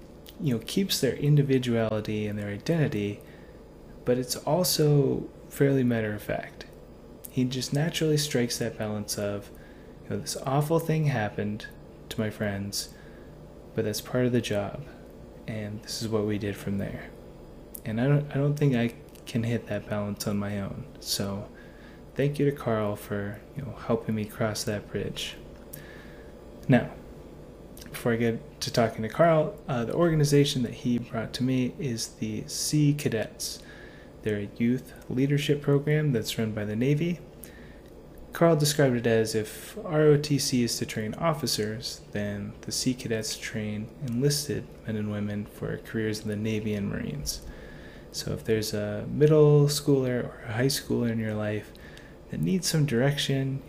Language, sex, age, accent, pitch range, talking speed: English, male, 20-39, American, 105-140 Hz, 160 wpm